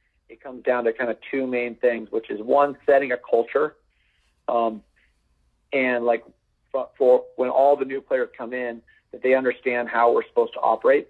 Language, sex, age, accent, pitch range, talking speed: English, male, 40-59, American, 115-135 Hz, 190 wpm